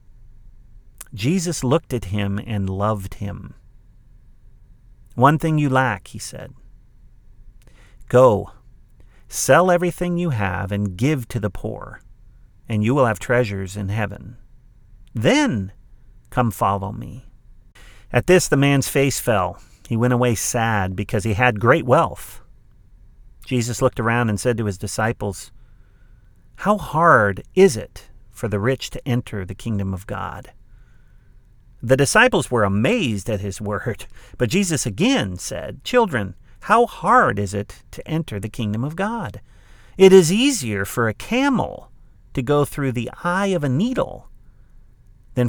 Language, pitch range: English, 105-135 Hz